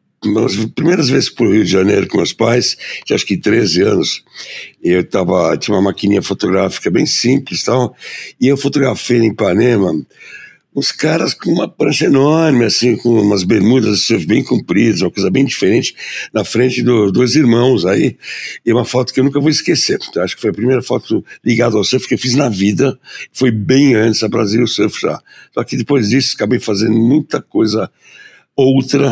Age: 60-79